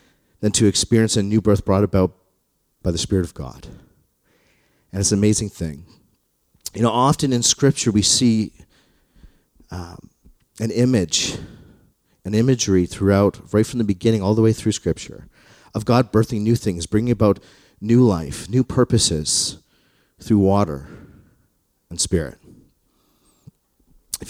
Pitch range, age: 85-115 Hz, 40-59